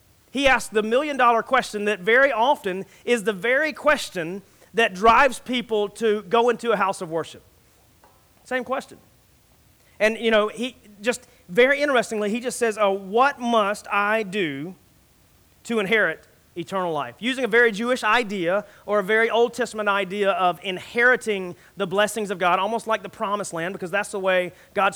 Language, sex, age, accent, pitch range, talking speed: English, male, 30-49, American, 180-235 Hz, 170 wpm